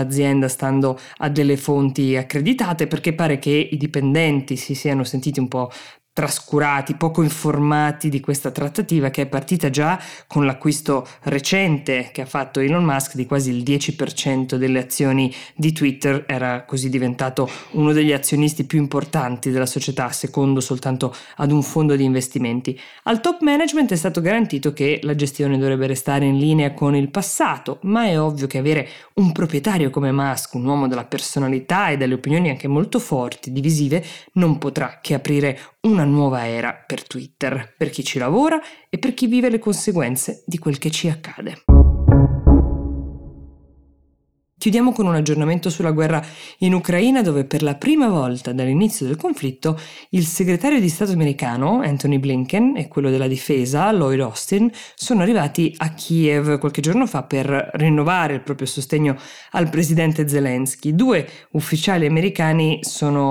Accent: native